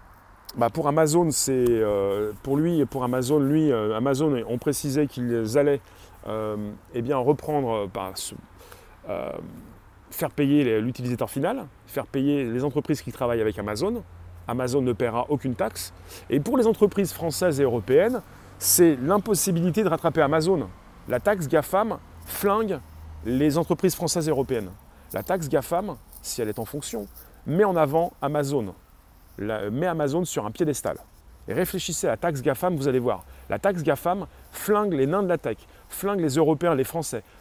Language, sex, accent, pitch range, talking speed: French, male, French, 115-170 Hz, 170 wpm